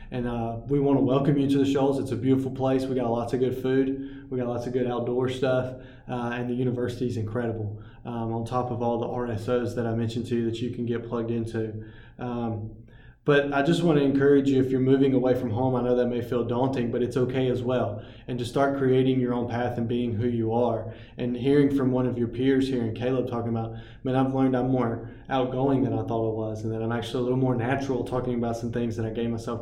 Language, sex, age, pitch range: English, male, 20-39, 115-130 Hz